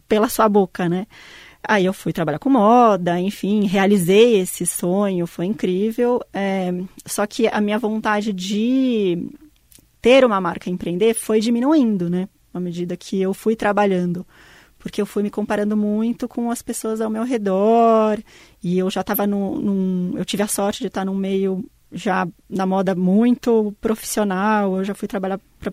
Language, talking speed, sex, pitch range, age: Portuguese, 170 wpm, female, 195-230 Hz, 20-39